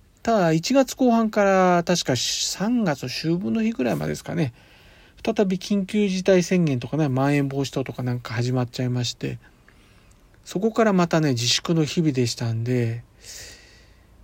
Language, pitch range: Japanese, 125-180 Hz